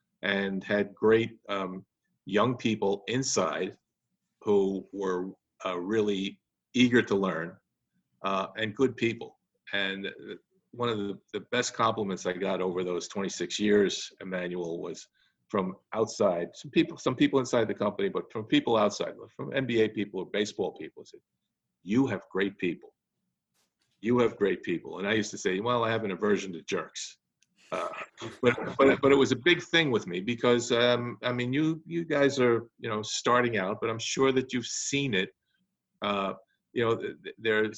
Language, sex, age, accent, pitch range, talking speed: English, male, 50-69, American, 100-125 Hz, 175 wpm